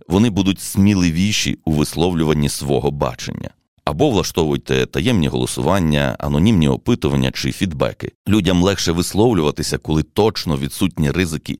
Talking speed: 115 wpm